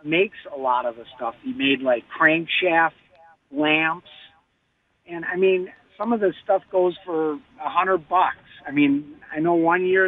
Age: 50-69